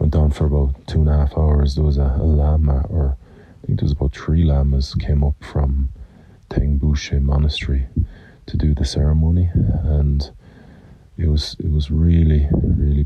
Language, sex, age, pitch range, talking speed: English, male, 40-59, 70-80 Hz, 175 wpm